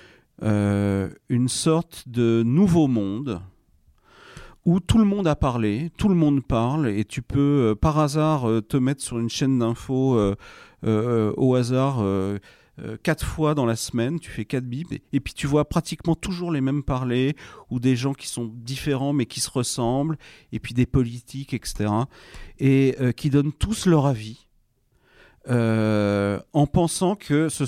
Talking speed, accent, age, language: 175 wpm, French, 40-59, French